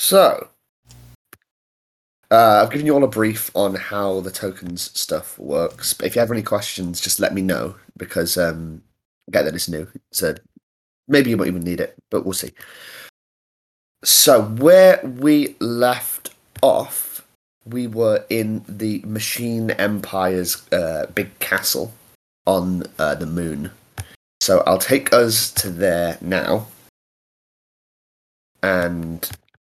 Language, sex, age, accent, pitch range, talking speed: English, male, 30-49, British, 90-110 Hz, 135 wpm